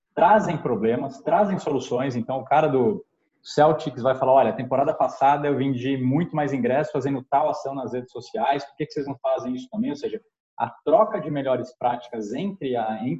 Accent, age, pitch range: Brazilian, 20-39, 135-205 Hz